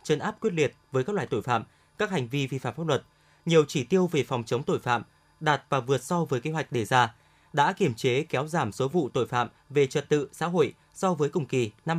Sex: male